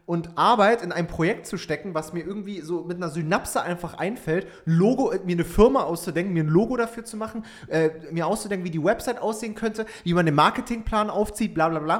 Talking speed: 215 wpm